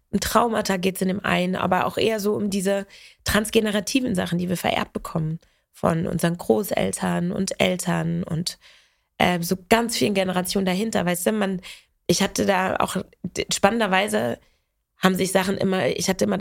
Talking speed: 165 wpm